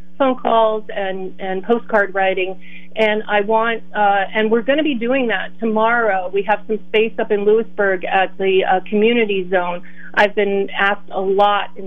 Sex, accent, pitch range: female, American, 185-210 Hz